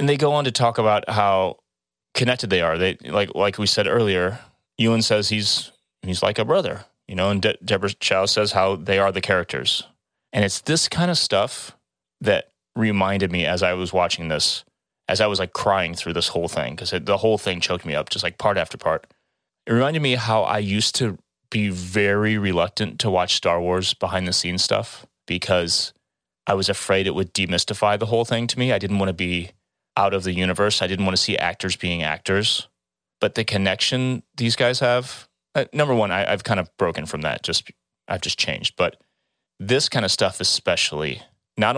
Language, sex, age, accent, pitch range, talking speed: English, male, 30-49, American, 90-110 Hz, 205 wpm